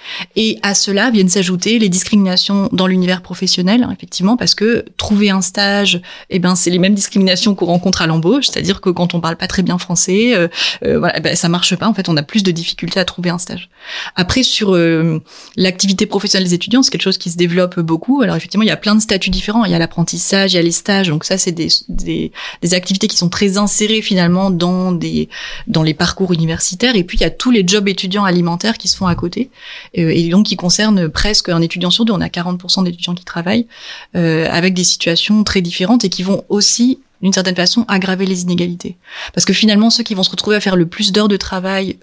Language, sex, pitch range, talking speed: French, female, 175-205 Hz, 235 wpm